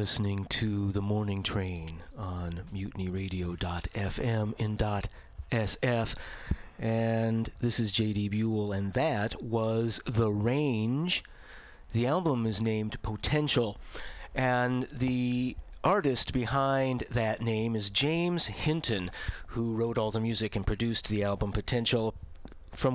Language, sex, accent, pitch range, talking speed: English, male, American, 95-120 Hz, 115 wpm